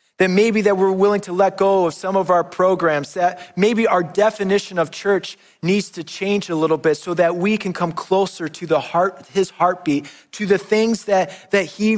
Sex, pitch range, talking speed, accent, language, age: male, 175-205 Hz, 210 wpm, American, English, 30-49